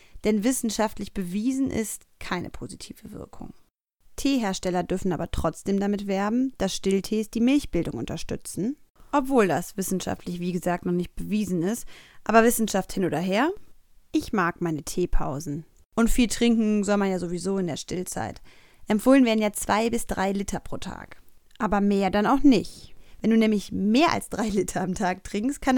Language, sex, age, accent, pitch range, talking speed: German, female, 30-49, German, 190-235 Hz, 165 wpm